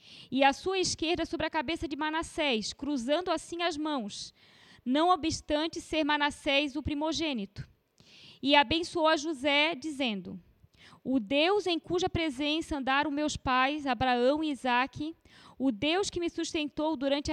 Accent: Brazilian